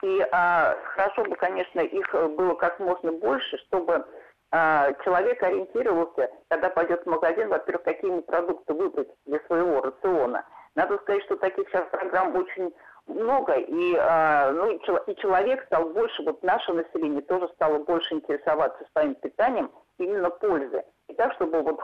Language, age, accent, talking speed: Russian, 50-69, native, 150 wpm